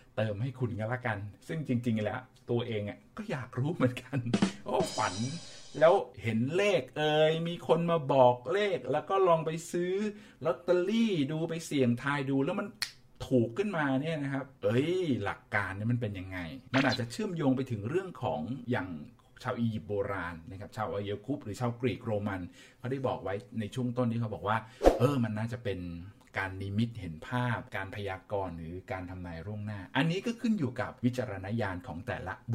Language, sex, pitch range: Thai, male, 110-135 Hz